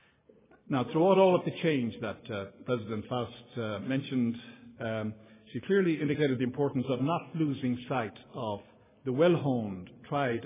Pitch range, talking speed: 115-140 Hz, 150 wpm